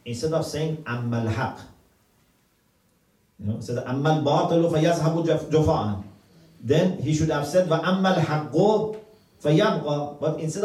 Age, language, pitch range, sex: 40-59, English, 105-170 Hz, male